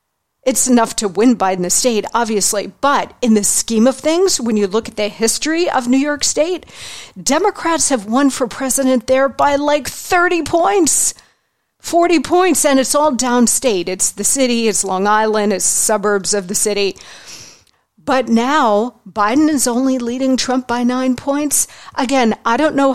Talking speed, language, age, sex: 170 wpm, English, 50-69, female